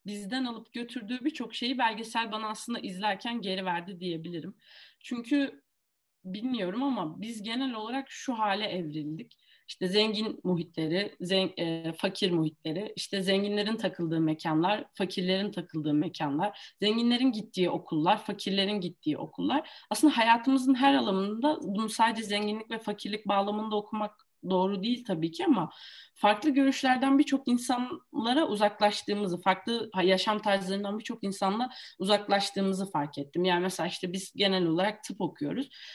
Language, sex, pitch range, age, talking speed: Turkish, female, 185-245 Hz, 30-49, 130 wpm